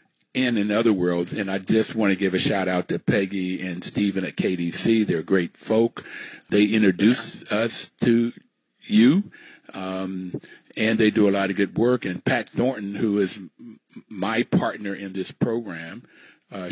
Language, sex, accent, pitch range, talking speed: English, male, American, 95-105 Hz, 165 wpm